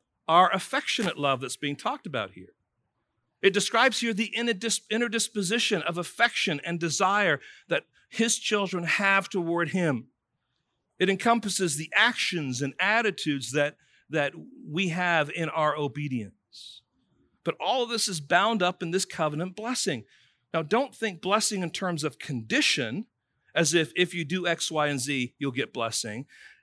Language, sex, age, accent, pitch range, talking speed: English, male, 50-69, American, 170-270 Hz, 155 wpm